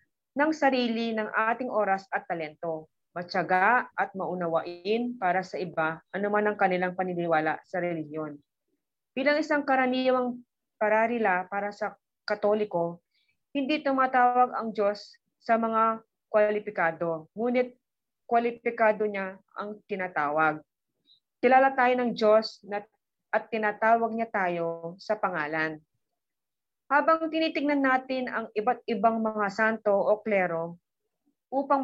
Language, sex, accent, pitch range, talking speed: Filipino, female, native, 185-240 Hz, 115 wpm